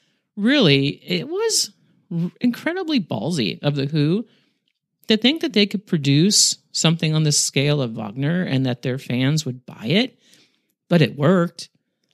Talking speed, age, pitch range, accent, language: 150 wpm, 40-59, 140-190 Hz, American, English